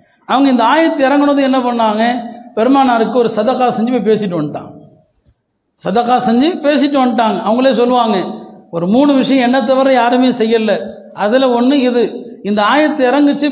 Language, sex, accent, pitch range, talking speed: Tamil, male, native, 205-250 Hz, 140 wpm